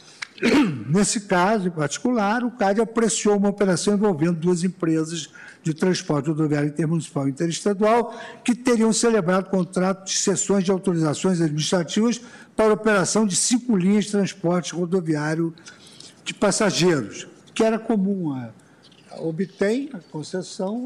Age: 60-79